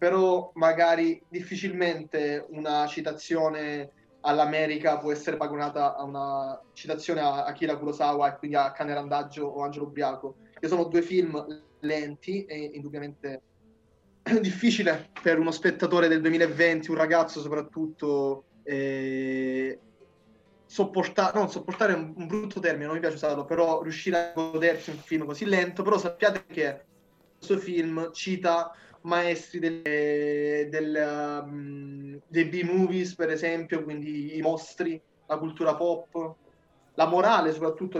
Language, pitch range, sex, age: Italian, 150-175 Hz, male, 20-39